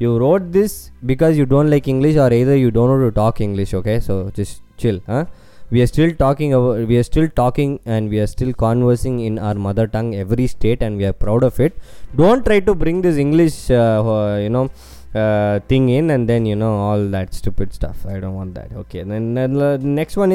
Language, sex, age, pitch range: Tamil, male, 20-39, 110-155 Hz